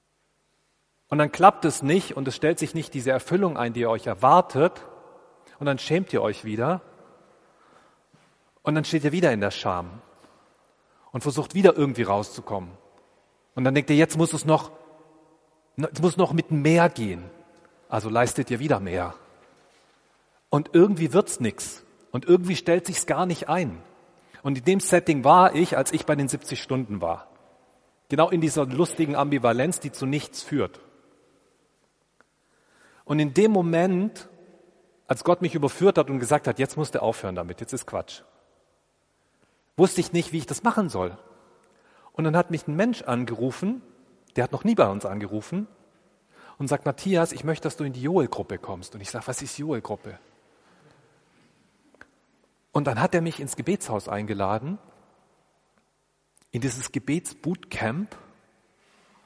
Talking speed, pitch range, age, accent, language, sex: 160 wpm, 120-170 Hz, 40-59, German, German, male